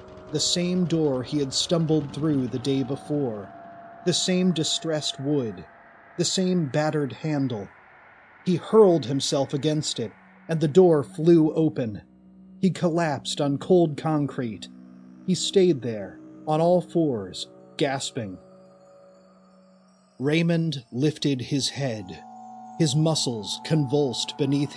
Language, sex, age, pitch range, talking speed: English, male, 30-49, 110-165 Hz, 115 wpm